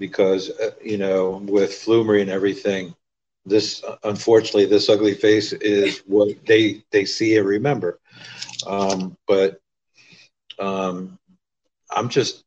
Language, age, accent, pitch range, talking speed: English, 50-69, American, 95-115 Hz, 115 wpm